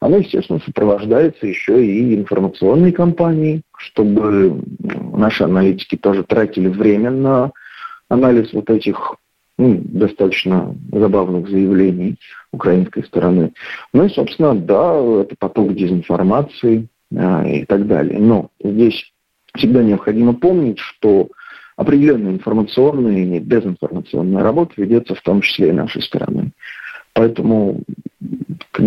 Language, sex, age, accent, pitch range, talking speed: Russian, male, 40-59, native, 95-125 Hz, 110 wpm